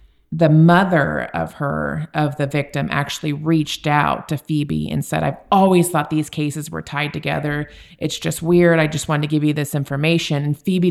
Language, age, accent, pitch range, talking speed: English, 30-49, American, 140-160 Hz, 195 wpm